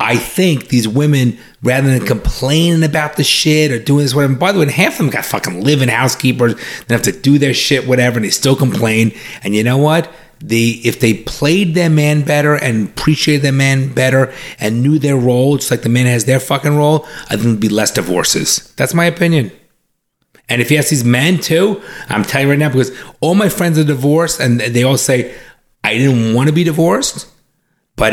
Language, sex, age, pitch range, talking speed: English, male, 30-49, 115-145 Hz, 220 wpm